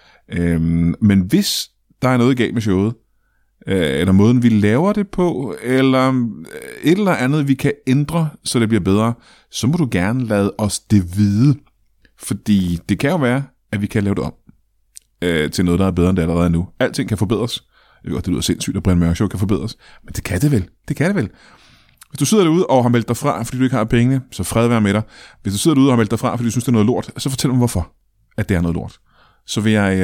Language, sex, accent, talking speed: Danish, male, native, 250 wpm